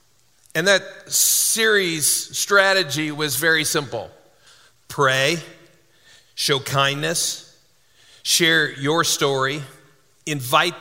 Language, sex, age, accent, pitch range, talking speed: English, male, 50-69, American, 135-170 Hz, 80 wpm